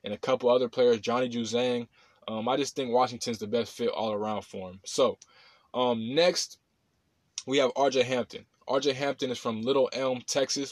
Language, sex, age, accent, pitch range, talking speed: English, male, 20-39, American, 120-135 Hz, 185 wpm